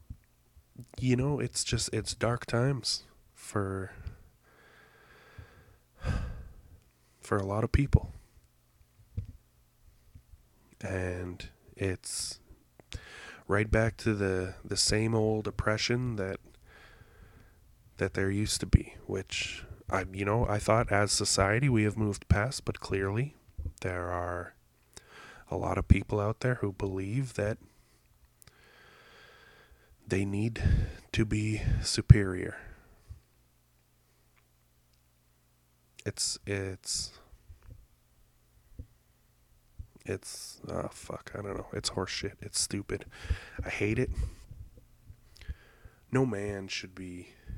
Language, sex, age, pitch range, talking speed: English, male, 20-39, 70-105 Hz, 100 wpm